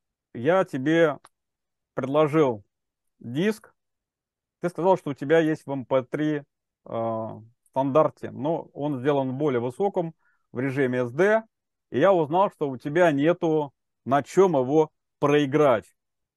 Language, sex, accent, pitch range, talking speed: Russian, male, native, 130-170 Hz, 125 wpm